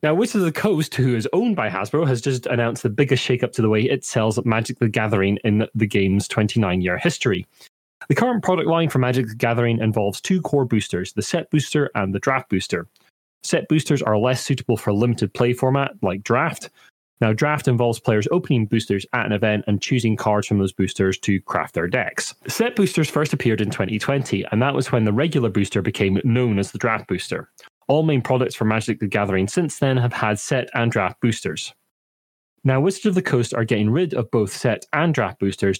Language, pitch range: English, 105-135 Hz